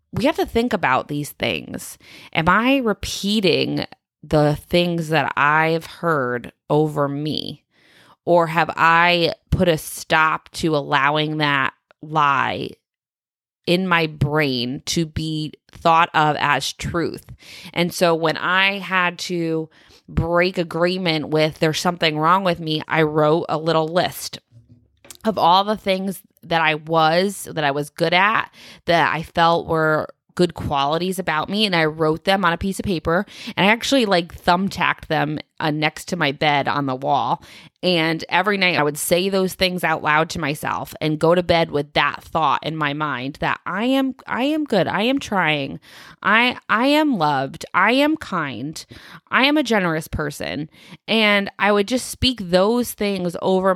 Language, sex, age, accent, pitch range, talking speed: English, female, 20-39, American, 155-190 Hz, 165 wpm